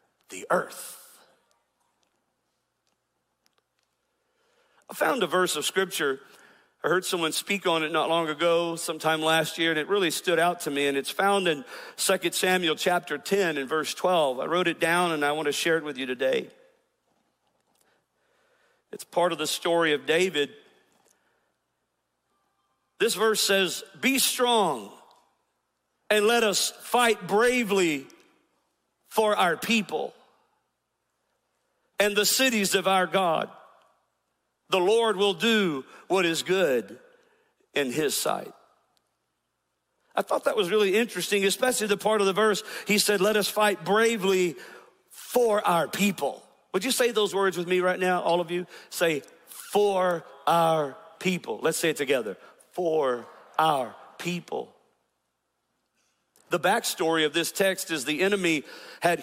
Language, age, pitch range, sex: English, 50-69, 165-215 Hz, male